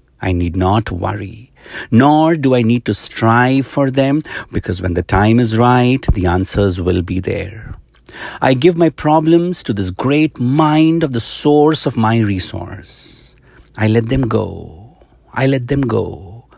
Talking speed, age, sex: 165 wpm, 60-79, male